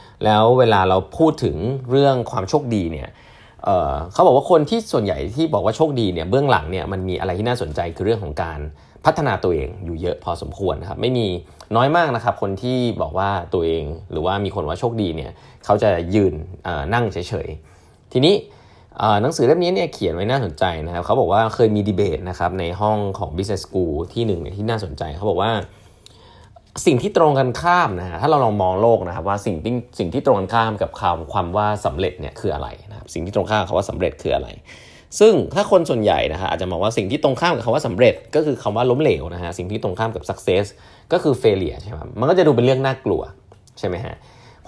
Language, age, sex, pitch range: Thai, 20-39, male, 90-120 Hz